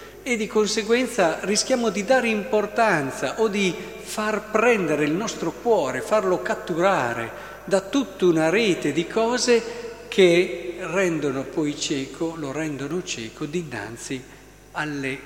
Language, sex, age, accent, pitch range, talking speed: Italian, male, 50-69, native, 135-195 Hz, 120 wpm